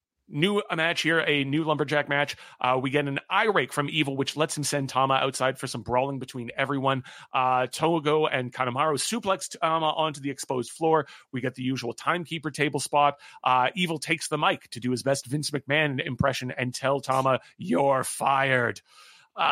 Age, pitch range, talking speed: 30-49, 130-155 Hz, 190 wpm